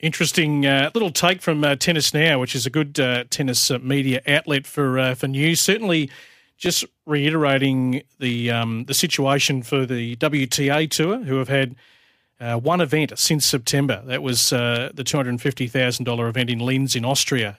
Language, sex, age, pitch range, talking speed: English, male, 40-59, 130-155 Hz, 170 wpm